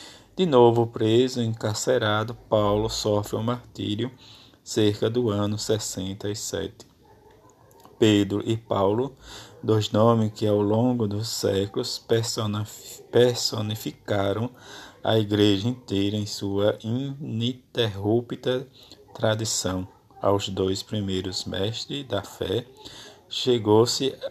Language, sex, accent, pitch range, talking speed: Portuguese, male, Brazilian, 105-120 Hz, 95 wpm